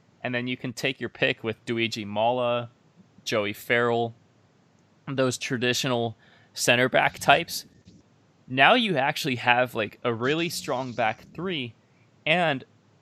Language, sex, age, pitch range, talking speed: English, male, 20-39, 115-135 Hz, 130 wpm